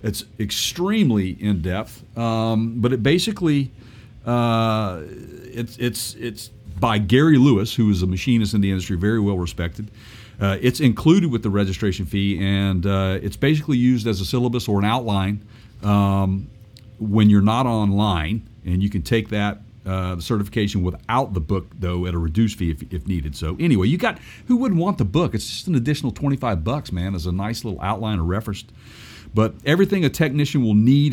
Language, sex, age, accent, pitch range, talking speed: English, male, 50-69, American, 95-120 Hz, 185 wpm